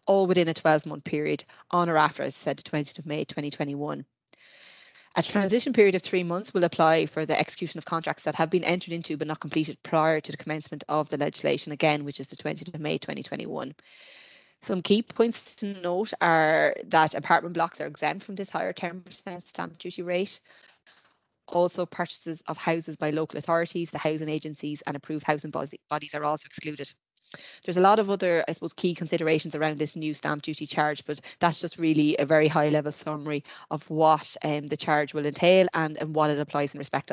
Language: English